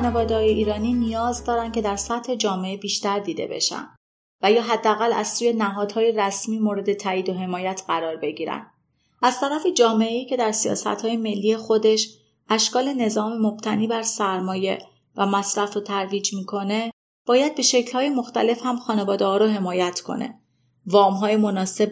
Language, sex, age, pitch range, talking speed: Persian, female, 30-49, 195-230 Hz, 155 wpm